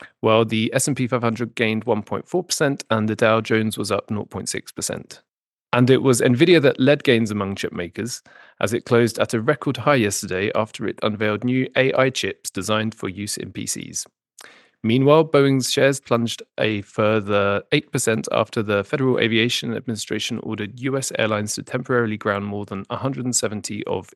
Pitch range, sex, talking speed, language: 110-135 Hz, male, 155 wpm, English